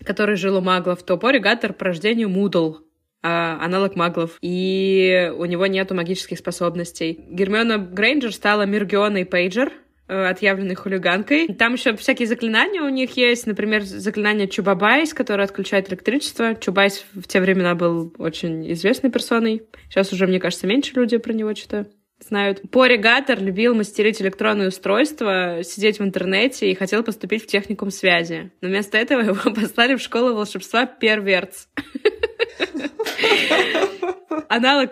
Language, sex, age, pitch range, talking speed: Russian, female, 20-39, 185-235 Hz, 140 wpm